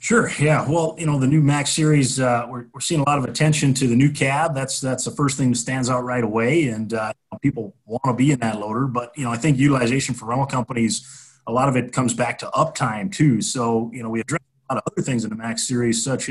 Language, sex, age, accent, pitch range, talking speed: English, male, 30-49, American, 115-135 Hz, 270 wpm